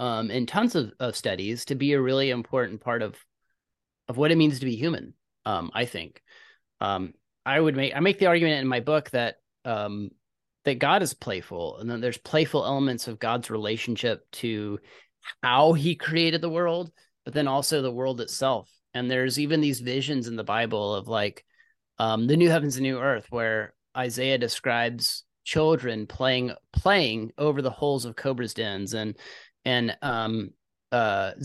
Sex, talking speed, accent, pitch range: male, 175 wpm, American, 115-150 Hz